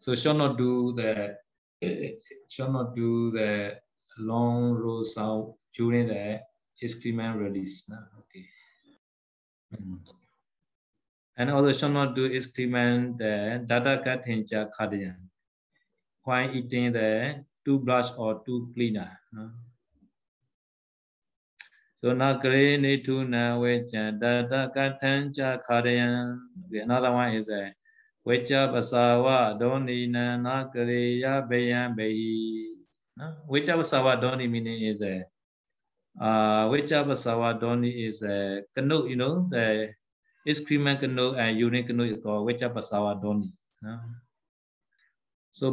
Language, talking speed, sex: Vietnamese, 115 wpm, male